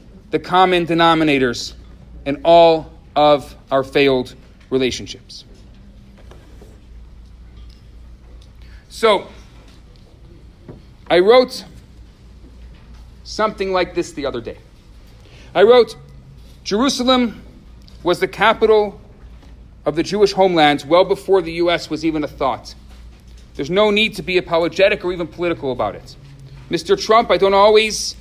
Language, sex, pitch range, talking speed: English, male, 140-195 Hz, 110 wpm